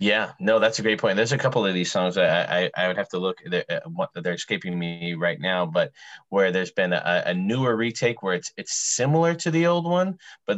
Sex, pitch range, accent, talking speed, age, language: male, 90-120 Hz, American, 250 wpm, 30-49, English